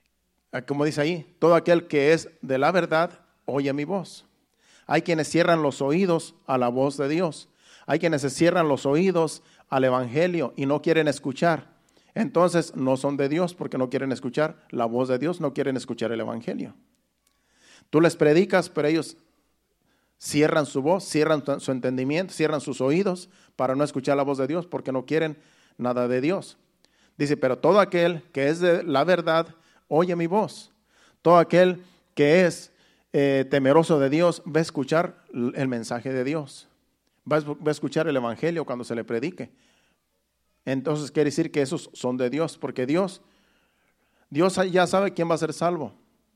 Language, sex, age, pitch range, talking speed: Spanish, male, 50-69, 135-170 Hz, 175 wpm